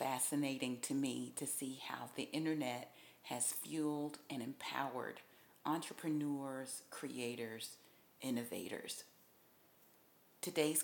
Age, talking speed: 40-59, 90 wpm